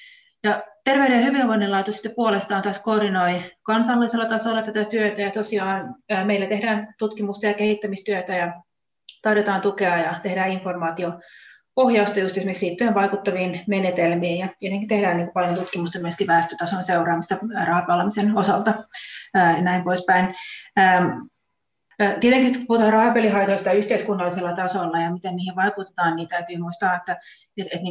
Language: Finnish